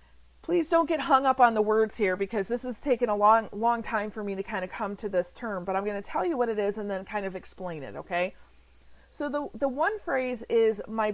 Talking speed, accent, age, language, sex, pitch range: 265 wpm, American, 40-59, English, female, 195-265 Hz